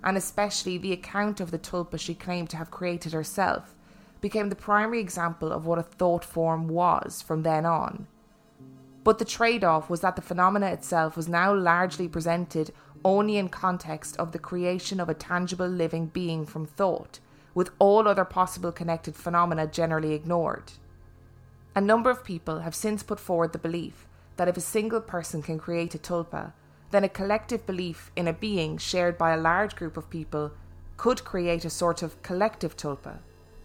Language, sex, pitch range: English, female, 160-185 Hz